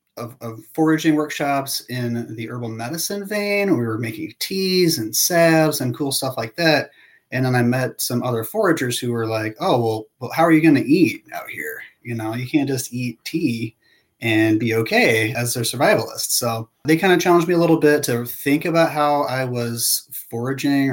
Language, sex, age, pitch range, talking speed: English, male, 30-49, 115-145 Hz, 200 wpm